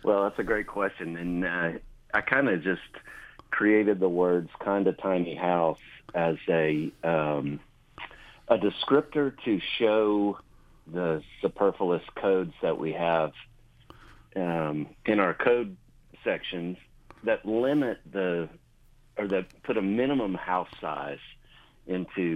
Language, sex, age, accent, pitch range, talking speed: English, male, 50-69, American, 80-105 Hz, 130 wpm